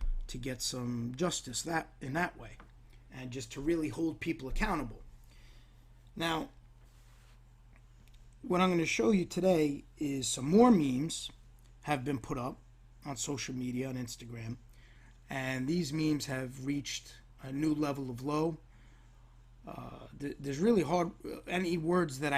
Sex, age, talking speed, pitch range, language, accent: male, 30-49, 145 wpm, 120-155 Hz, English, American